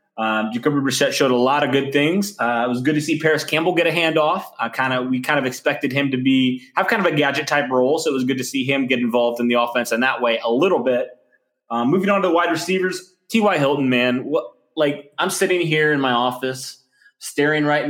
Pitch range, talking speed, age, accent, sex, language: 120-150 Hz, 250 wpm, 20-39, American, male, English